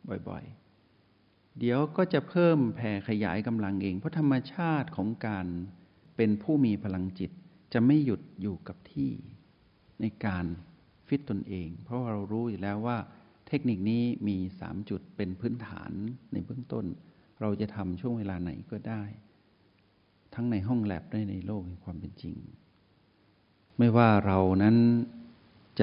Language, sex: Thai, male